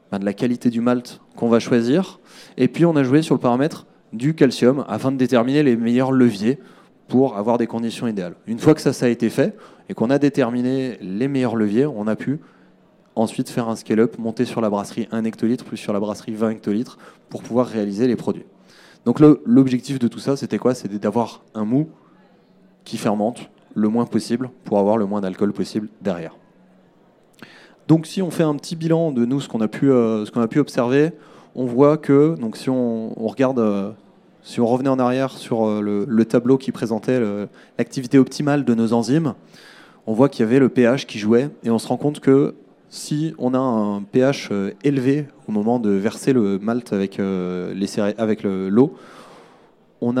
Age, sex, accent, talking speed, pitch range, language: 20-39, male, French, 210 wpm, 110-135 Hz, French